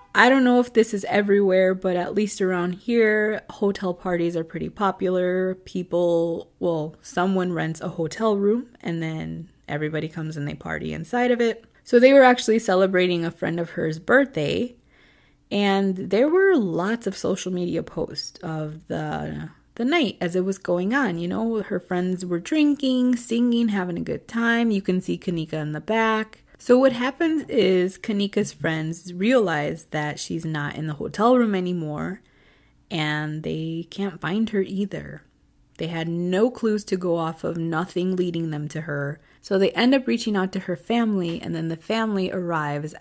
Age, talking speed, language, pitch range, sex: 20-39, 175 wpm, English, 165-220 Hz, female